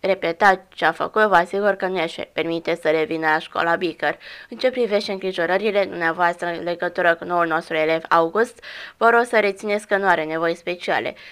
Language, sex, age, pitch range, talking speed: Romanian, female, 20-39, 170-200 Hz, 190 wpm